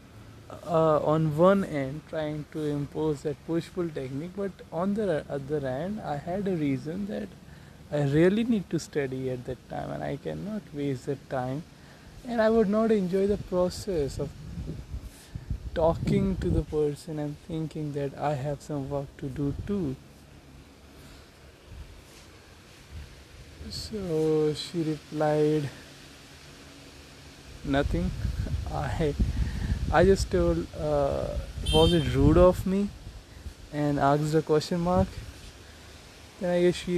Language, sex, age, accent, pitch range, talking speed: Hindi, male, 20-39, native, 105-160 Hz, 130 wpm